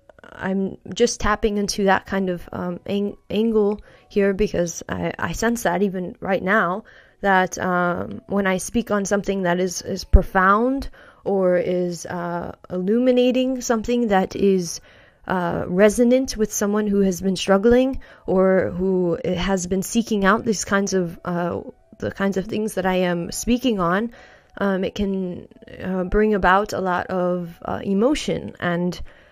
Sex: female